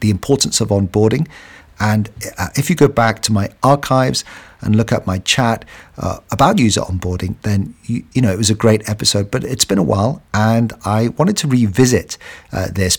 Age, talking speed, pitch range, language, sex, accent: 50-69, 195 wpm, 95-120 Hz, English, male, British